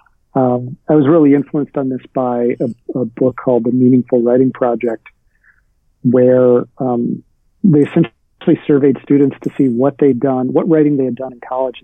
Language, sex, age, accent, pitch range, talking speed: English, male, 40-59, American, 125-150 Hz, 170 wpm